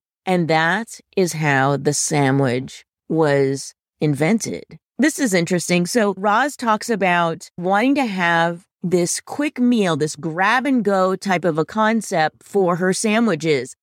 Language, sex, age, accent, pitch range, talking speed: English, female, 30-49, American, 160-235 Hz, 130 wpm